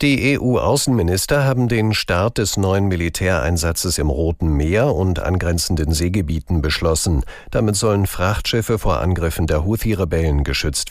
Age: 60-79